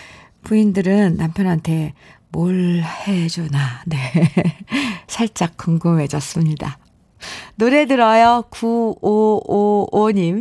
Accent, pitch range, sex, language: native, 165-235 Hz, female, Korean